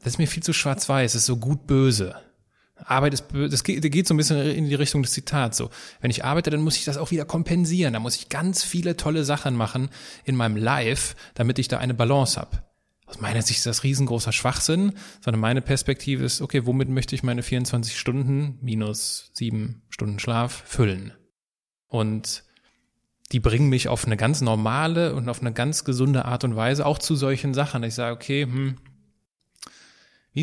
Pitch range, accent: 120-145 Hz, German